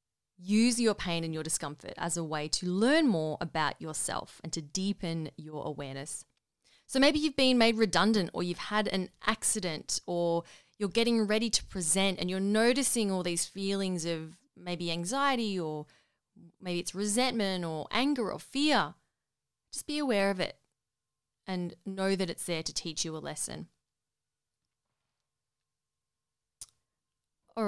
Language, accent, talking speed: English, Australian, 150 wpm